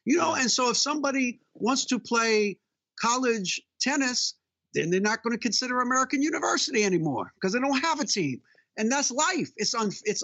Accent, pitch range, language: American, 175-265 Hz, English